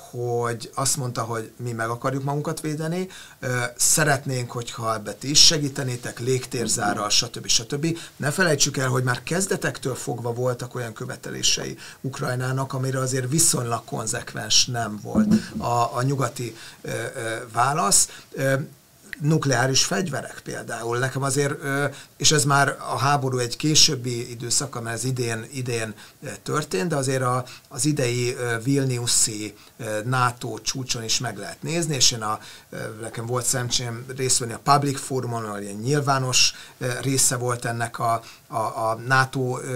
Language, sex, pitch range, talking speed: Hungarian, male, 120-145 Hz, 135 wpm